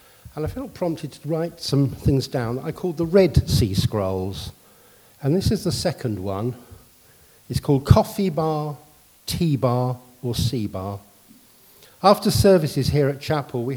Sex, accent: male, British